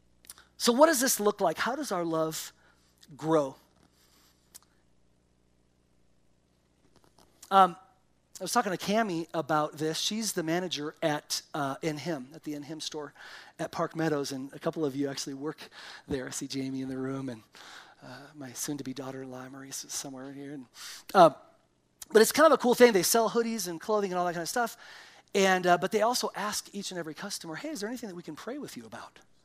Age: 40-59